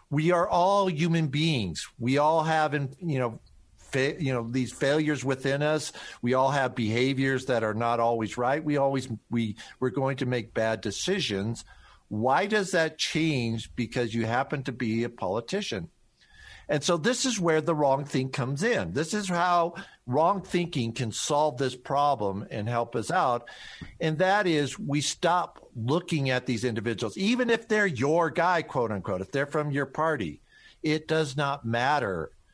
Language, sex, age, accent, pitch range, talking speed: English, male, 50-69, American, 125-160 Hz, 175 wpm